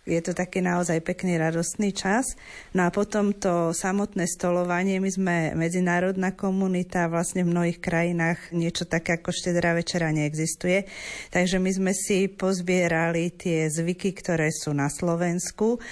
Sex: female